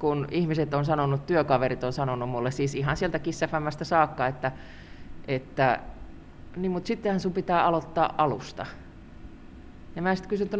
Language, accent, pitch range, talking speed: Finnish, native, 140-205 Hz, 140 wpm